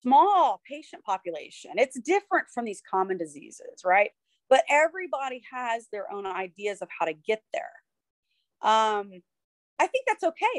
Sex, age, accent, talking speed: female, 40-59, American, 145 wpm